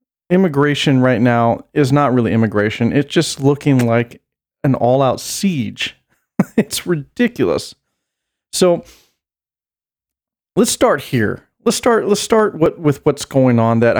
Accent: American